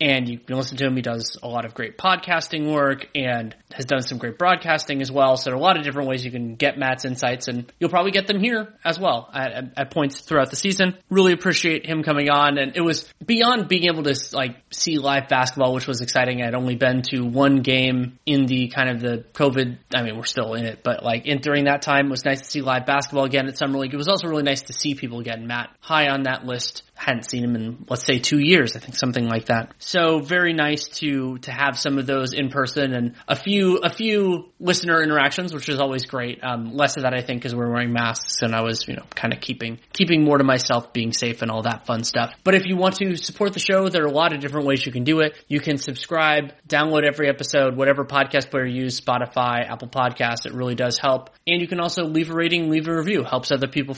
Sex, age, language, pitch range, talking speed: male, 30-49, English, 130-155 Hz, 260 wpm